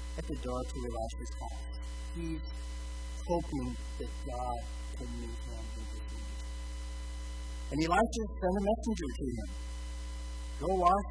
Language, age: English, 50-69